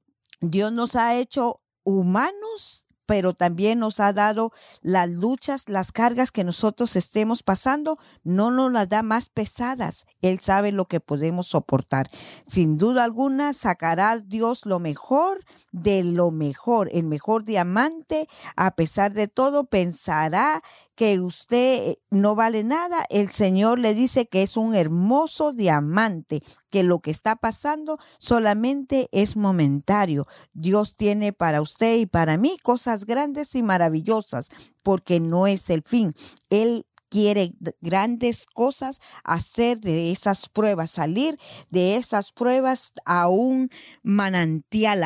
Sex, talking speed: female, 135 wpm